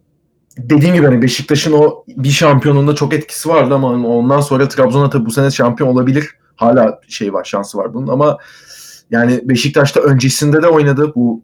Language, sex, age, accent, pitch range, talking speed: Turkish, male, 30-49, native, 115-145 Hz, 170 wpm